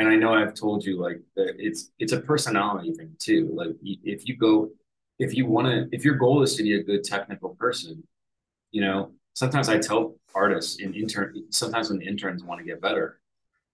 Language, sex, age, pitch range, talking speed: English, male, 20-39, 95-135 Hz, 205 wpm